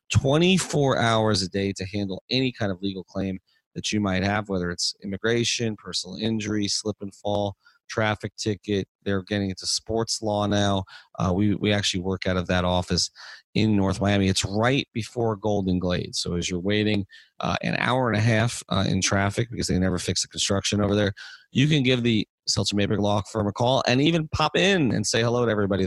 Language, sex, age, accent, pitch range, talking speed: English, male, 30-49, American, 90-110 Hz, 205 wpm